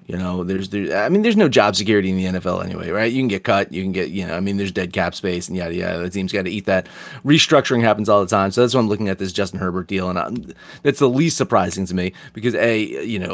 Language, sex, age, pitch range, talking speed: English, male, 30-49, 100-125 Hz, 290 wpm